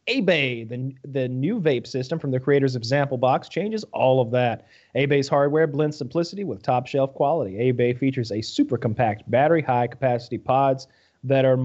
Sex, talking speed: male, 180 wpm